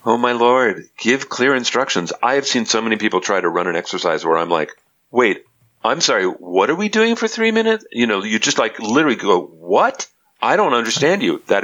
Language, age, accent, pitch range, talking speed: English, 40-59, American, 95-130 Hz, 220 wpm